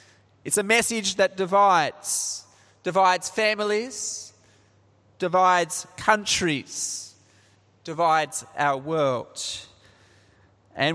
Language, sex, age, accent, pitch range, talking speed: English, male, 20-39, Australian, 130-205 Hz, 70 wpm